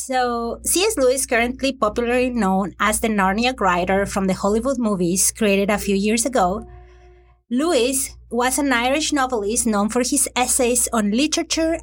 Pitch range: 210-270 Hz